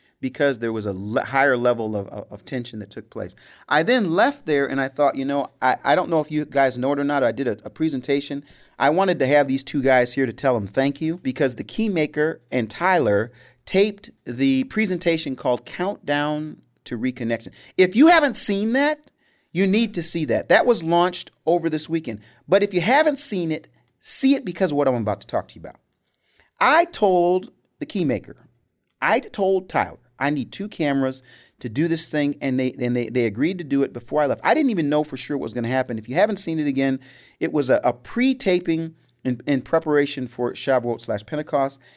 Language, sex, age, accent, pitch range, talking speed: English, male, 40-59, American, 130-195 Hz, 220 wpm